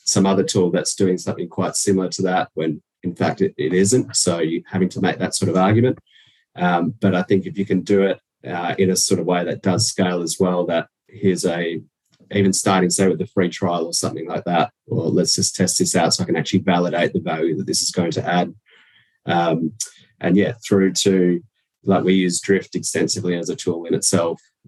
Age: 20-39